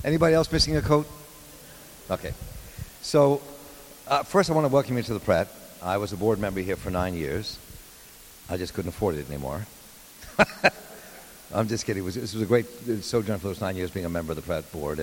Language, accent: English, American